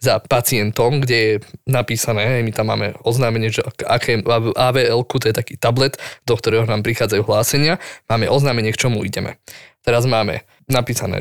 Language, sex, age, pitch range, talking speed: Slovak, male, 20-39, 115-135 Hz, 150 wpm